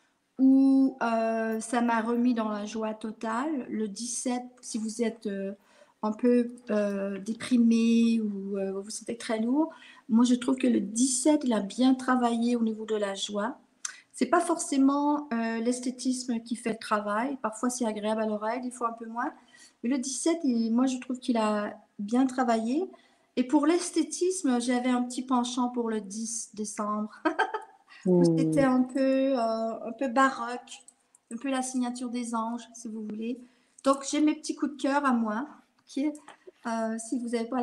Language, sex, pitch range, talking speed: French, female, 220-260 Hz, 180 wpm